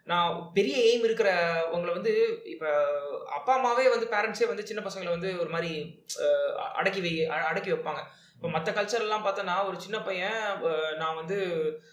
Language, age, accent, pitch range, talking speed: Tamil, 20-39, native, 180-260 Hz, 140 wpm